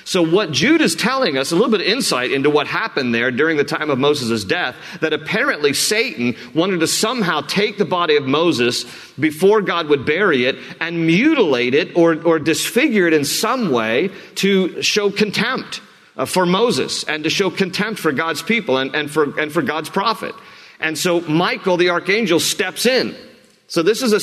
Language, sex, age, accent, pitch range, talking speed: English, male, 50-69, American, 160-210 Hz, 190 wpm